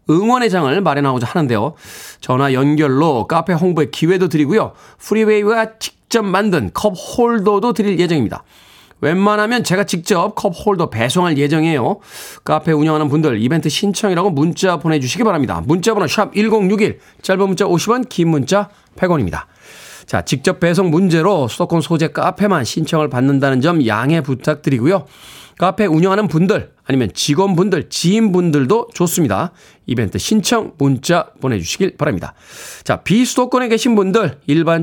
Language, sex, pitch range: Korean, male, 150-205 Hz